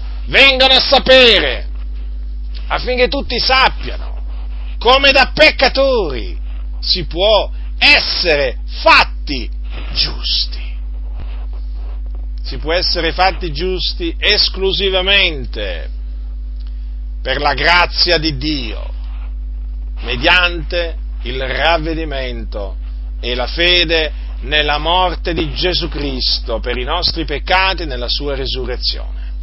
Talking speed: 90 wpm